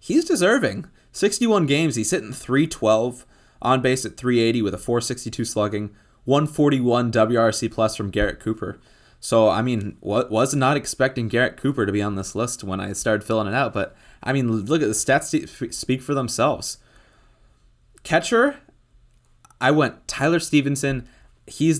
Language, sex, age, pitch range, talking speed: English, male, 20-39, 110-130 Hz, 155 wpm